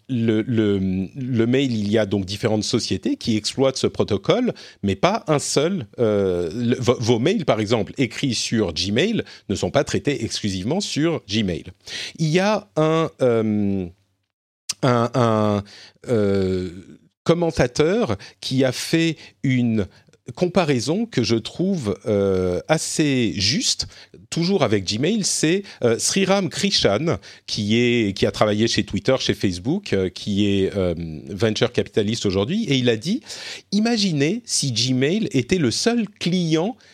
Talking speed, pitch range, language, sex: 140 wpm, 105-160 Hz, French, male